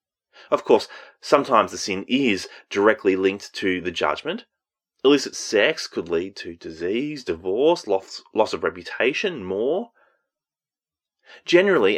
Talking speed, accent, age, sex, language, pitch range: 115 wpm, Australian, 30-49, male, English, 120-195 Hz